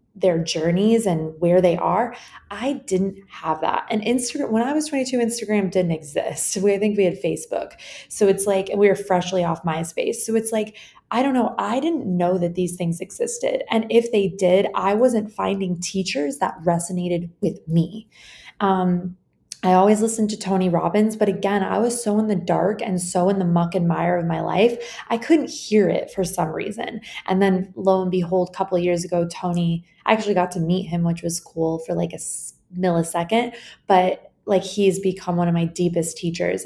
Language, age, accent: English, 20-39, American